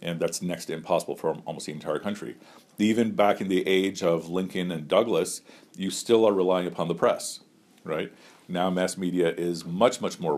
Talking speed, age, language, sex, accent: 195 wpm, 40-59, English, male, American